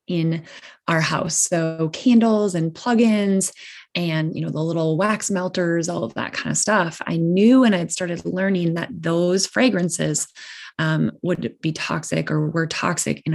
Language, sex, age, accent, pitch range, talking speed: English, female, 20-39, American, 165-195 Hz, 165 wpm